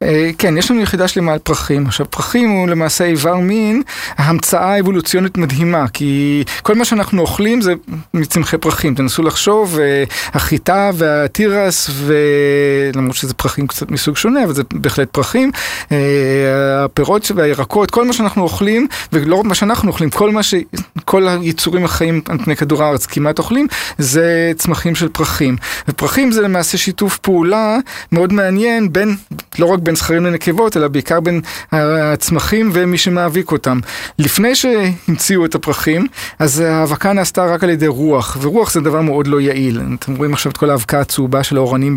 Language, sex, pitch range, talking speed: Hebrew, male, 145-190 Hz, 155 wpm